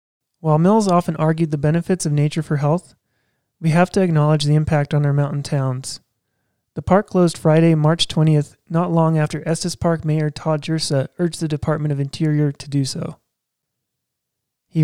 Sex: male